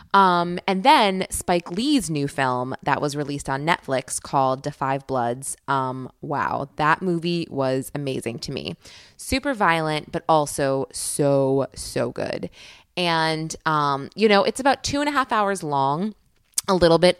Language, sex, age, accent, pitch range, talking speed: English, female, 20-39, American, 140-180 Hz, 160 wpm